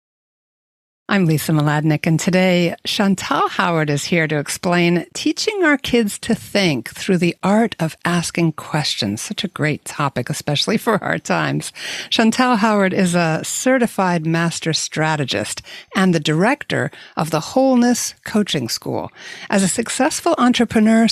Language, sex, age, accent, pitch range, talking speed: English, female, 60-79, American, 155-220 Hz, 140 wpm